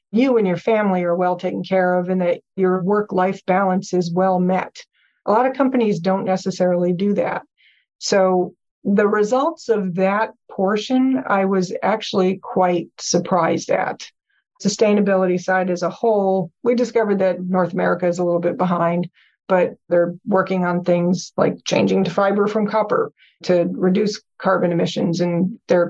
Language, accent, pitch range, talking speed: English, American, 180-210 Hz, 160 wpm